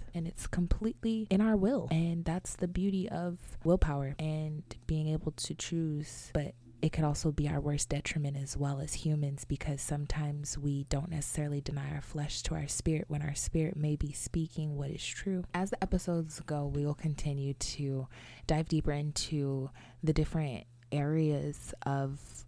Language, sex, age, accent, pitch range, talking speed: English, female, 20-39, American, 140-165 Hz, 170 wpm